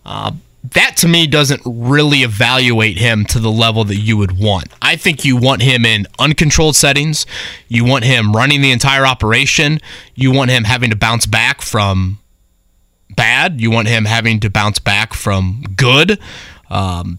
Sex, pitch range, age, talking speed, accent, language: male, 110-140 Hz, 30-49, 170 wpm, American, English